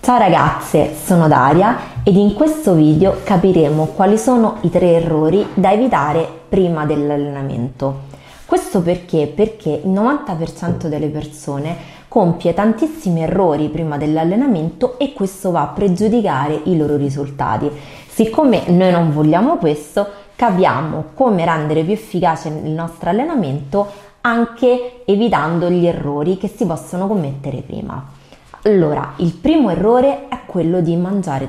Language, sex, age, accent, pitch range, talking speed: Italian, female, 20-39, native, 150-200 Hz, 130 wpm